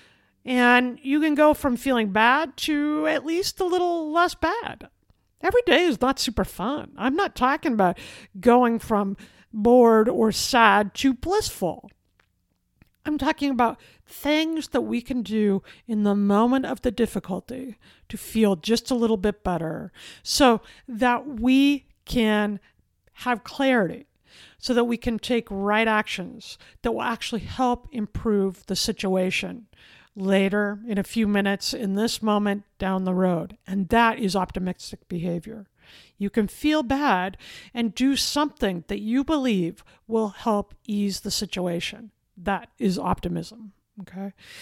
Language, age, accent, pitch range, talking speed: English, 50-69, American, 205-260 Hz, 145 wpm